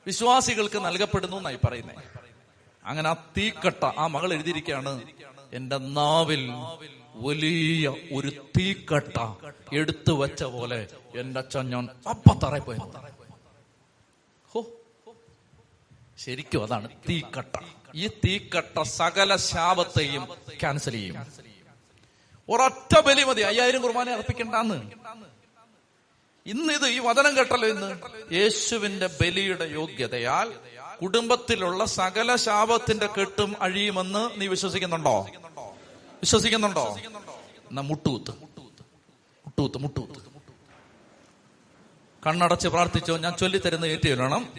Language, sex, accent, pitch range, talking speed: Malayalam, male, native, 135-195 Hz, 80 wpm